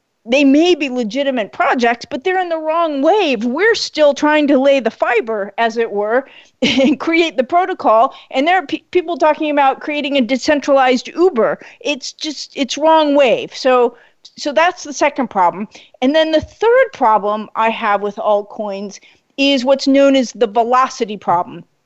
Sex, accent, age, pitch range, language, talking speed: female, American, 40-59, 230-305 Hz, English, 175 wpm